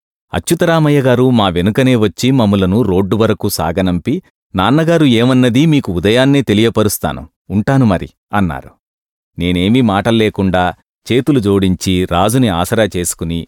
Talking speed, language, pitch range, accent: 115 wpm, English, 100-145 Hz, Indian